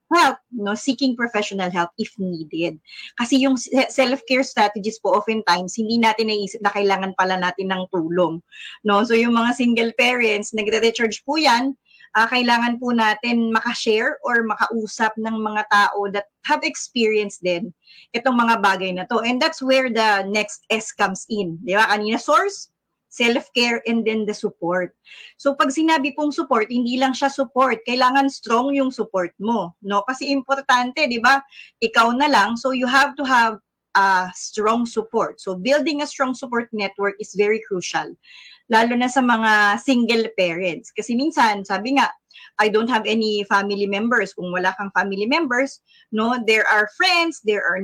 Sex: female